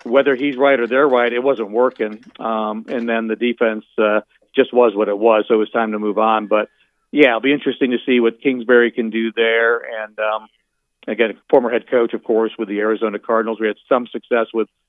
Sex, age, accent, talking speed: male, 50-69, American, 225 wpm